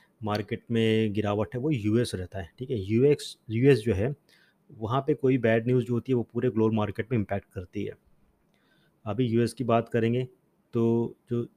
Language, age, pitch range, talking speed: Hindi, 30-49, 105-125 Hz, 190 wpm